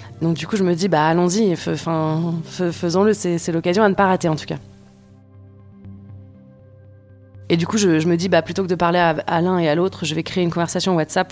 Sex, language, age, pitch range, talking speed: female, French, 20-39, 170-205 Hz, 240 wpm